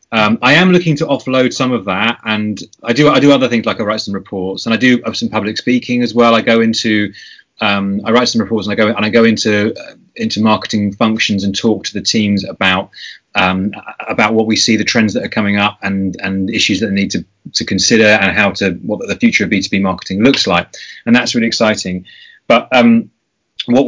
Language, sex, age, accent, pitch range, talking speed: English, male, 30-49, British, 100-120 Hz, 235 wpm